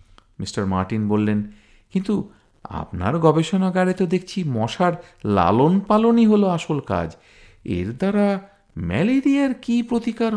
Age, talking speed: 50-69, 105 wpm